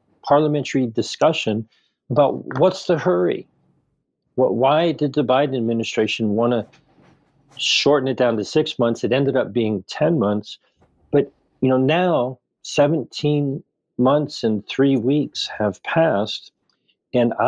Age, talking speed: 50-69, 125 wpm